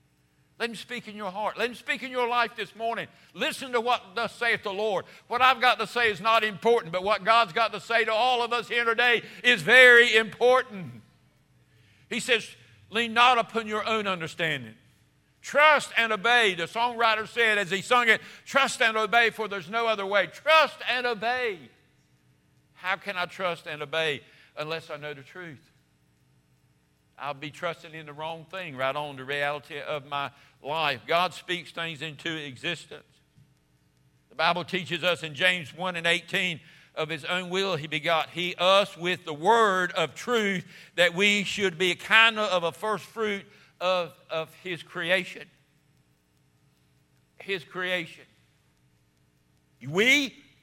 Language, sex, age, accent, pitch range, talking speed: English, male, 60-79, American, 160-225 Hz, 170 wpm